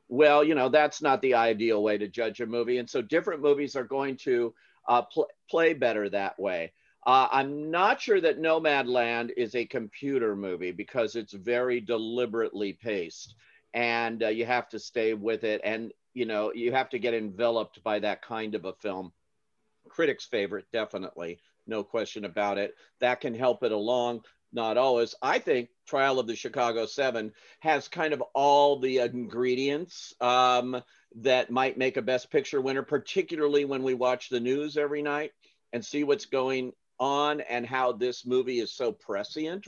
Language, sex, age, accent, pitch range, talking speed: English, male, 50-69, American, 115-140 Hz, 175 wpm